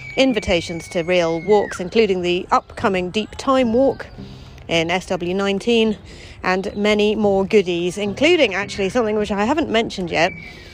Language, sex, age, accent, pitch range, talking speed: English, female, 40-59, British, 175-215 Hz, 135 wpm